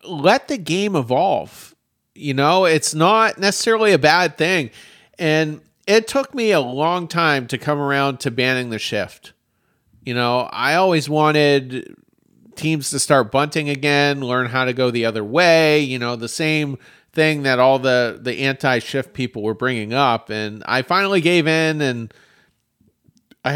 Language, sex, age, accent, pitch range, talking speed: English, male, 40-59, American, 125-165 Hz, 165 wpm